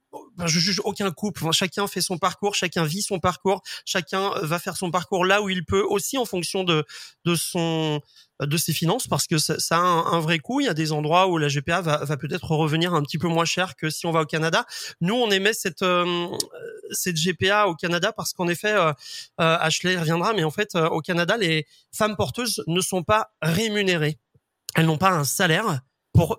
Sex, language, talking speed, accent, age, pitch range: male, French, 225 wpm, French, 30-49, 155-190 Hz